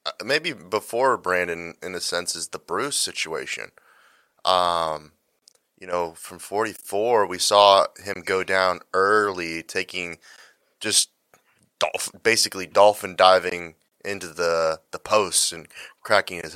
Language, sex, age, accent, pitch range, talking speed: English, male, 20-39, American, 90-110 Hz, 125 wpm